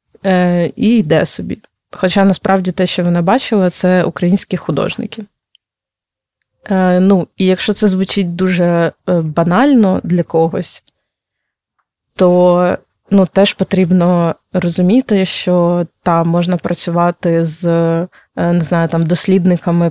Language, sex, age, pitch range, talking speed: Ukrainian, female, 20-39, 170-190 Hz, 100 wpm